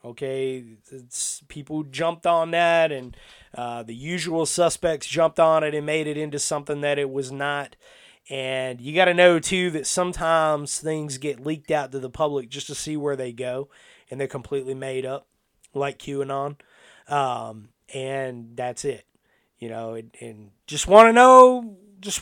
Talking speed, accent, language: 165 wpm, American, English